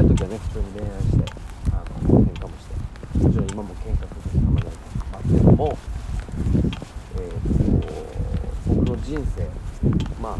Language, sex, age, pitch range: Japanese, male, 40-59, 80-100 Hz